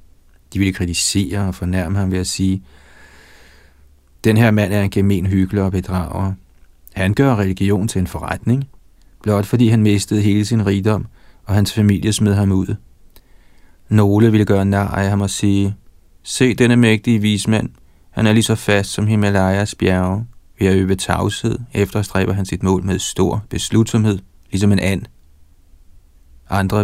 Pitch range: 90-105 Hz